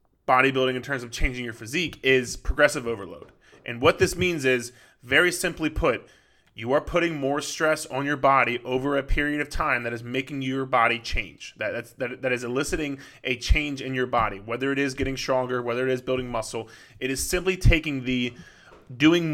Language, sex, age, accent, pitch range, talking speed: English, male, 20-39, American, 125-145 Hz, 195 wpm